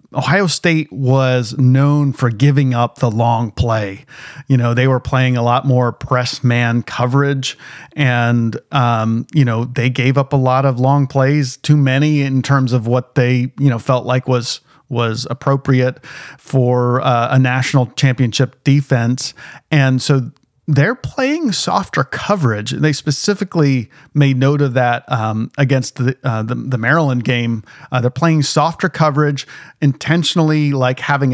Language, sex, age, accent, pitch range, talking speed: English, male, 40-59, American, 125-150 Hz, 155 wpm